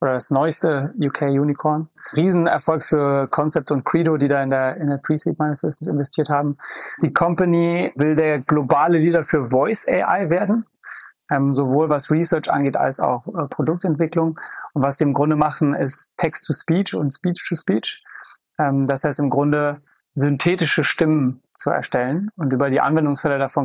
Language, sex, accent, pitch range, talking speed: German, male, German, 140-160 Hz, 155 wpm